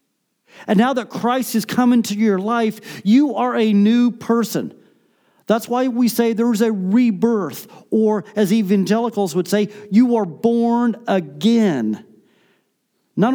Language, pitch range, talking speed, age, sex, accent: German, 190-240 Hz, 145 wpm, 40-59, male, American